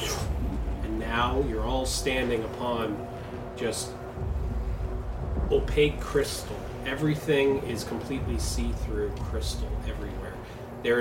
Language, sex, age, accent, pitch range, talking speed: English, male, 30-49, American, 110-130 Hz, 85 wpm